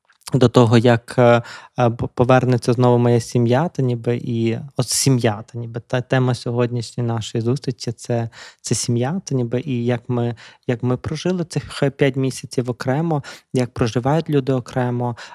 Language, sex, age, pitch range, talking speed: Ukrainian, male, 20-39, 125-145 Hz, 145 wpm